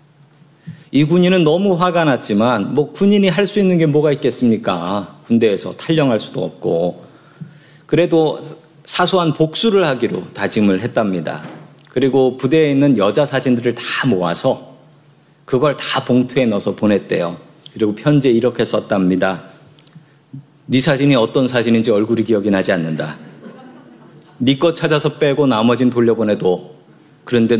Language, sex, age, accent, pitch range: Korean, male, 40-59, native, 125-160 Hz